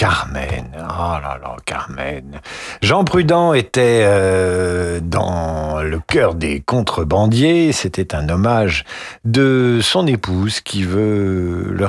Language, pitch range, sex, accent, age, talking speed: French, 90-145 Hz, male, French, 50-69, 115 wpm